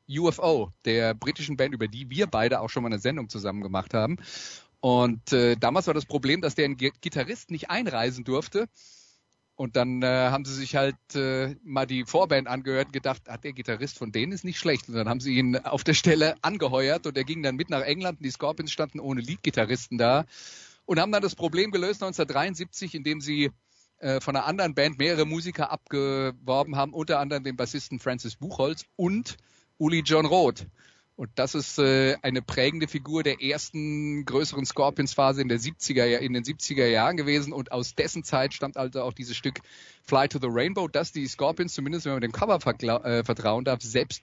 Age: 40-59